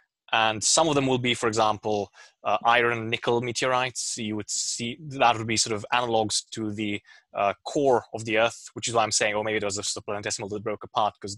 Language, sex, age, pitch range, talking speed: English, male, 20-39, 105-125 Hz, 225 wpm